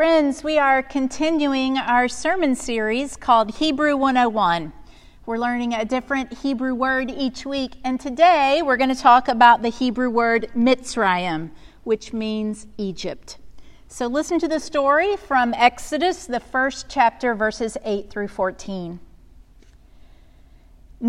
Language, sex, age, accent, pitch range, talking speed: English, female, 40-59, American, 205-270 Hz, 130 wpm